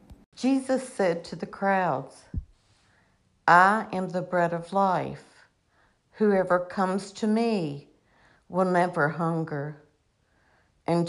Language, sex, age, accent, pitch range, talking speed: English, female, 60-79, American, 155-195 Hz, 105 wpm